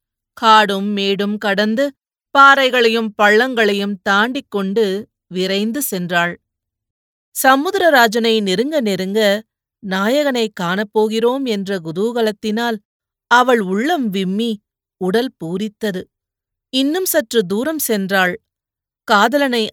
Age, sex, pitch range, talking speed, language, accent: 30-49, female, 195-245 Hz, 80 wpm, Tamil, native